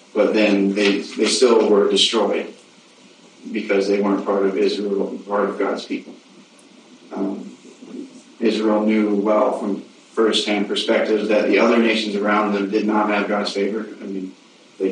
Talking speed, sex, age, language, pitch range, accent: 155 wpm, male, 30-49, English, 100-110 Hz, American